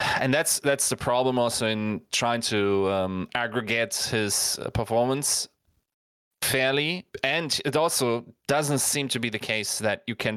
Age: 20-39